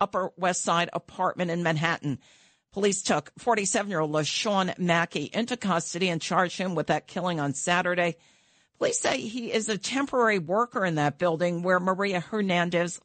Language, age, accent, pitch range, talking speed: English, 50-69, American, 155-210 Hz, 155 wpm